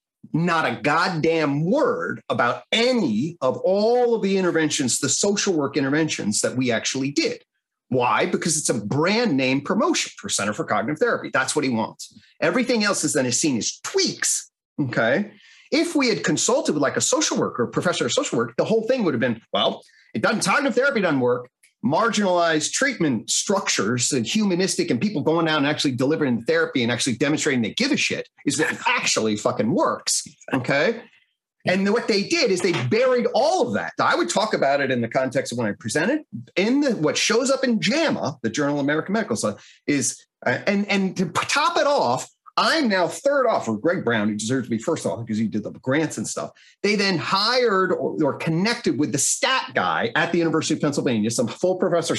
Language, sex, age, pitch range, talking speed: English, male, 40-59, 135-225 Hz, 200 wpm